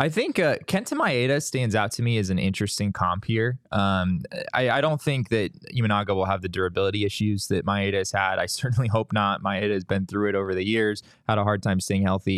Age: 20-39